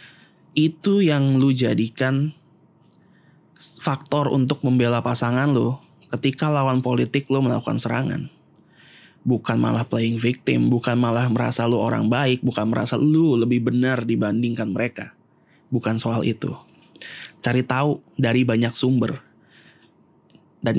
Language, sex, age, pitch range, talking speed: Indonesian, male, 20-39, 115-140 Hz, 120 wpm